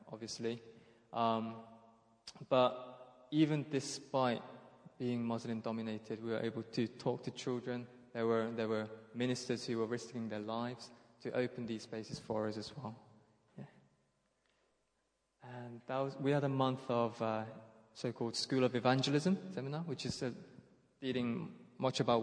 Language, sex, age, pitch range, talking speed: English, male, 20-39, 115-130 Hz, 135 wpm